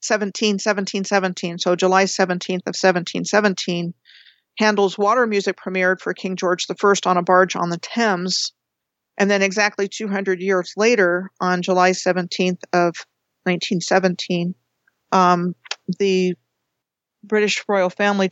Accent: American